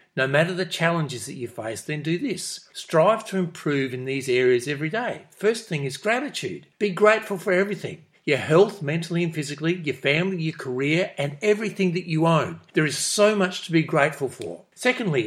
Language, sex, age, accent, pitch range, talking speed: English, male, 50-69, Australian, 135-180 Hz, 195 wpm